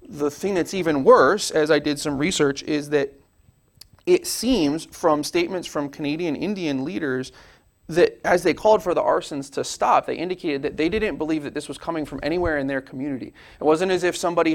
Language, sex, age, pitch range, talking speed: English, male, 30-49, 140-180 Hz, 200 wpm